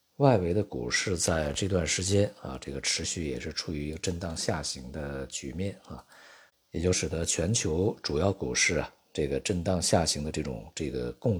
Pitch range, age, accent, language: 70-95 Hz, 50-69, native, Chinese